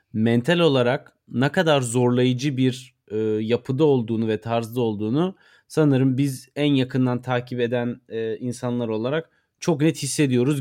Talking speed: 135 wpm